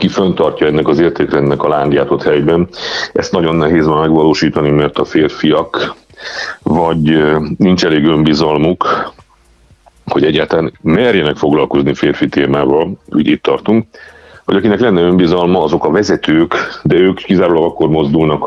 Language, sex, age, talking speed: Hungarian, male, 40-59, 135 wpm